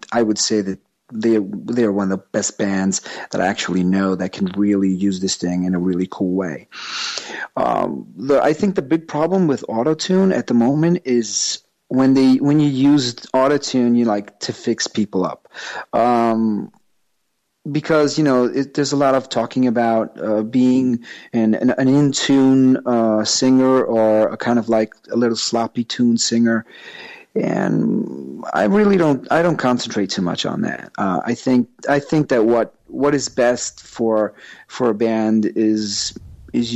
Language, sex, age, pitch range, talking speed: English, male, 40-59, 110-140 Hz, 175 wpm